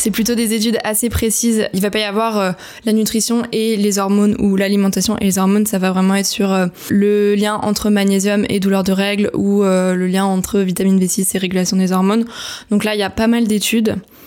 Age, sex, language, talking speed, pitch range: 20-39, female, French, 235 wpm, 190-210 Hz